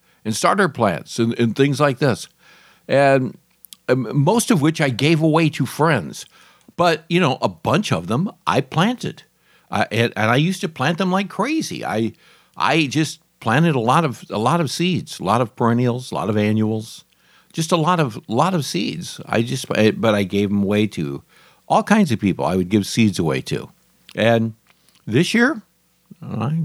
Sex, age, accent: male, 60-79, American